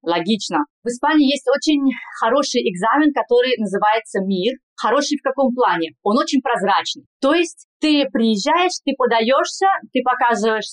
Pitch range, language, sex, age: 230-280 Hz, Russian, female, 20-39